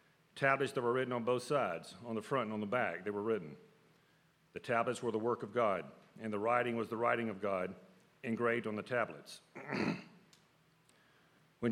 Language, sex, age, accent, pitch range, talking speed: English, male, 50-69, American, 115-145 Hz, 190 wpm